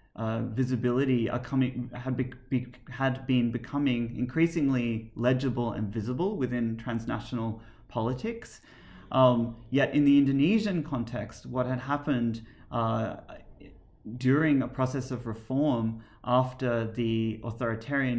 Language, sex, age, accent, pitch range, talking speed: English, male, 30-49, Australian, 115-135 Hz, 115 wpm